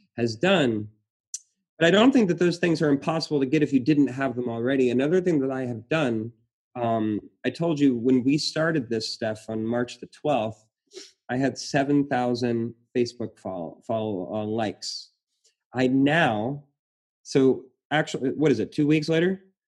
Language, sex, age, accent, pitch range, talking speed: English, male, 30-49, American, 115-140 Hz, 165 wpm